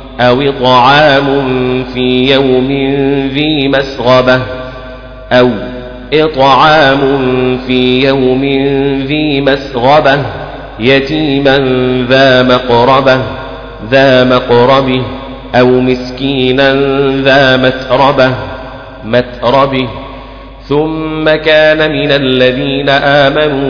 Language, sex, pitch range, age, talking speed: Arabic, male, 125-140 Hz, 40-59, 70 wpm